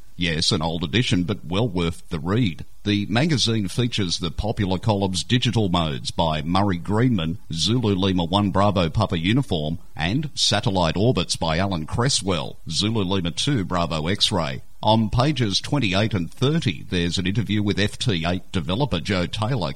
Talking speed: 140 wpm